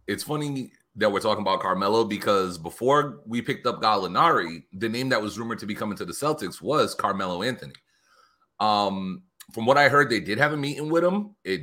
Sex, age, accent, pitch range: male, 30-49, American, 95-125 Hz